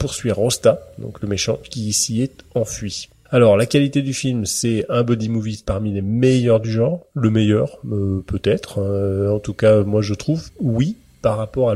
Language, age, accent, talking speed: French, 30-49, French, 190 wpm